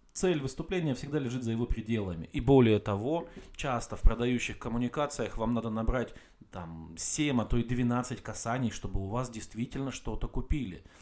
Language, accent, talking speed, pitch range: Russian, native, 165 wpm, 105-135 Hz